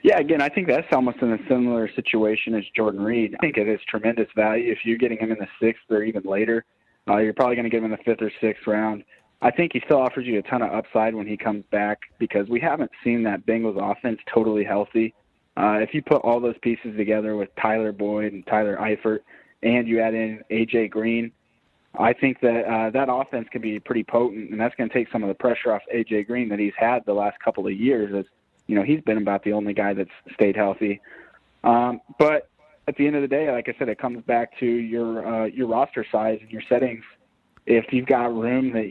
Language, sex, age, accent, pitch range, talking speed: English, male, 20-39, American, 110-125 Hz, 240 wpm